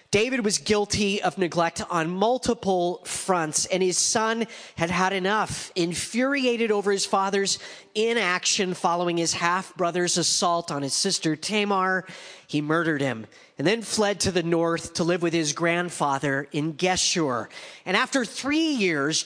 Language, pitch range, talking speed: English, 165-210 Hz, 145 wpm